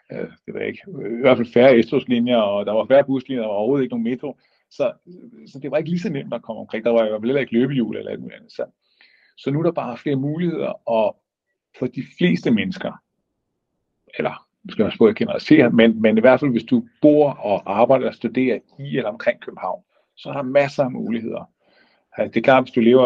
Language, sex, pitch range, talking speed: Danish, male, 115-145 Hz, 240 wpm